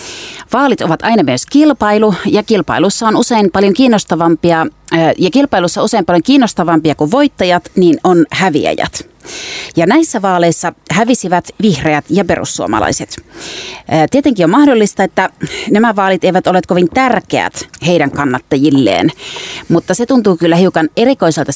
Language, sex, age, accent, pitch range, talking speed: Finnish, female, 30-49, native, 170-235 Hz, 130 wpm